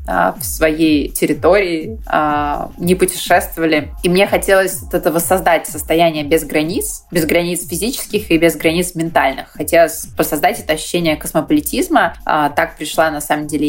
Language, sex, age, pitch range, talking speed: Russian, female, 20-39, 150-170 Hz, 135 wpm